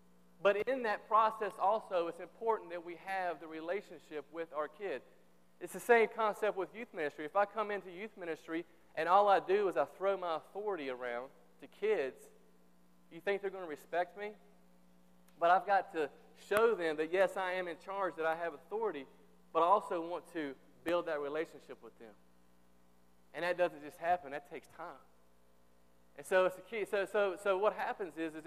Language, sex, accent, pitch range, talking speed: English, male, American, 140-185 Hz, 195 wpm